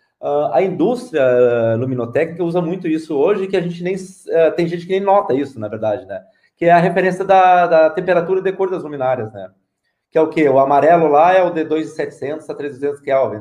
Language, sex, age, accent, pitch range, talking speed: Portuguese, male, 30-49, Brazilian, 145-190 Hz, 220 wpm